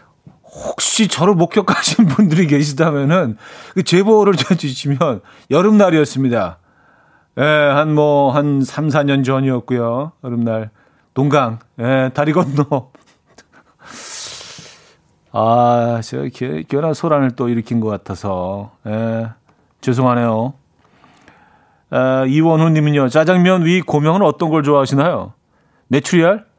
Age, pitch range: 40-59, 115-160 Hz